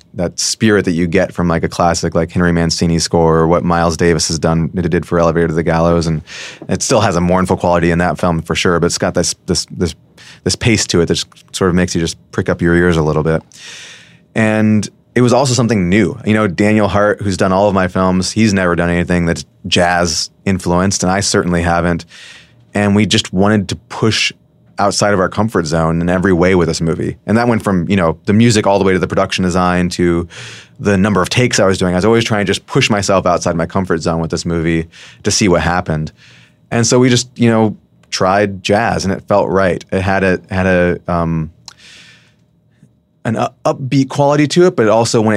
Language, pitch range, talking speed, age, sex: English, 85-105 Hz, 235 wpm, 20-39, male